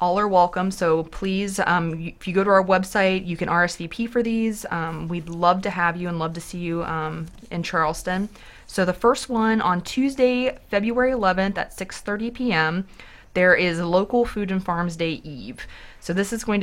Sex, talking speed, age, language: female, 195 wpm, 20-39, English